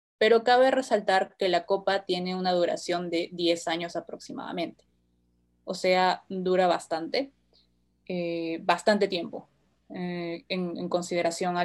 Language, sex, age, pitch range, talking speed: Spanish, female, 20-39, 175-215 Hz, 130 wpm